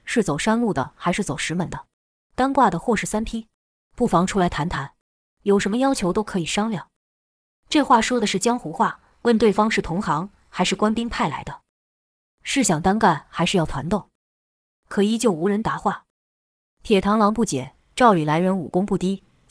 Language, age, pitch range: Chinese, 20-39, 170-220 Hz